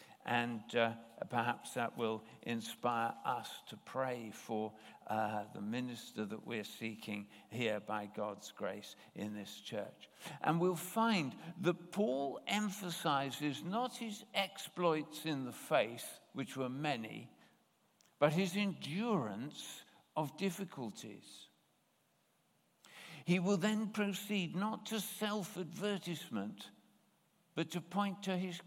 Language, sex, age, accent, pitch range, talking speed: English, male, 60-79, British, 130-190 Hz, 115 wpm